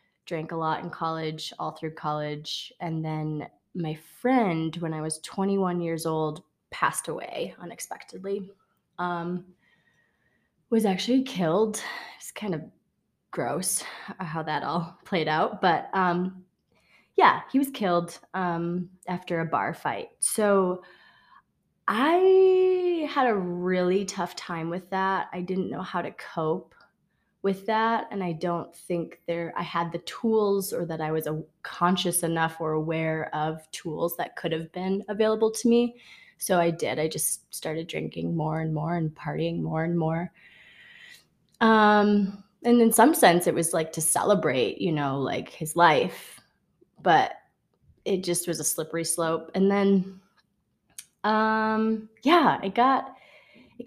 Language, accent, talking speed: English, American, 150 wpm